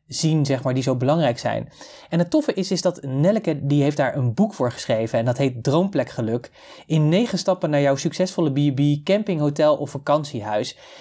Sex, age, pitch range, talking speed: male, 20-39, 135-170 Hz, 205 wpm